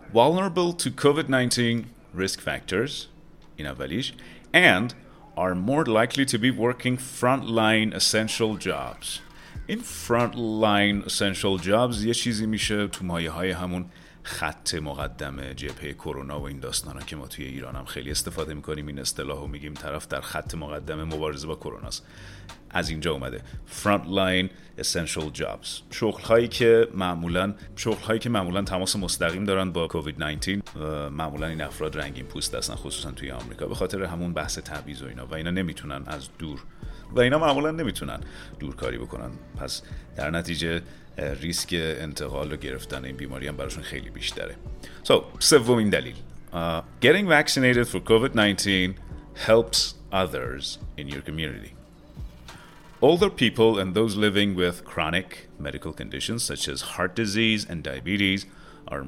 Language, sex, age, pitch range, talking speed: Persian, male, 30-49, 80-115 Hz, 130 wpm